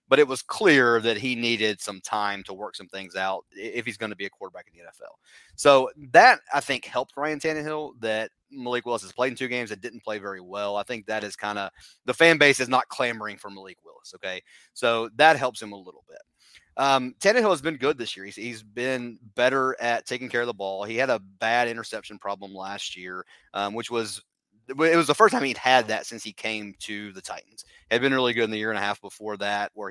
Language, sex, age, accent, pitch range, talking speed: English, male, 30-49, American, 105-130 Hz, 245 wpm